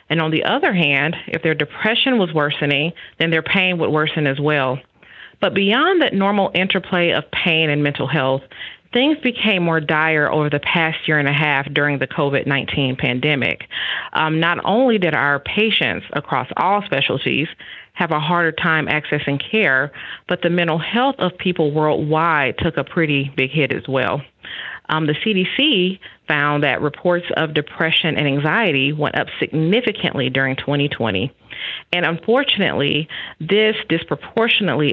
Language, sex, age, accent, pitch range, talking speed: English, female, 40-59, American, 145-195 Hz, 155 wpm